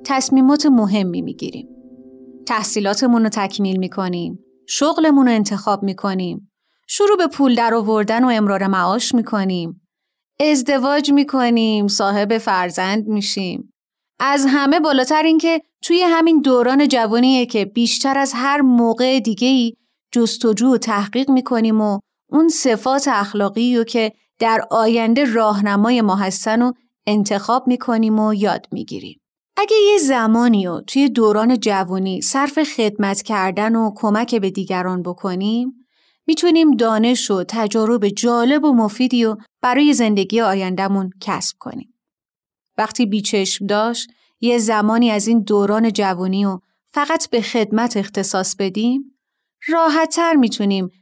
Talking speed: 125 wpm